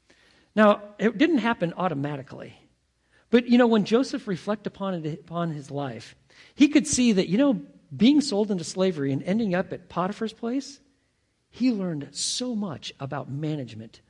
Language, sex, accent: English, male, American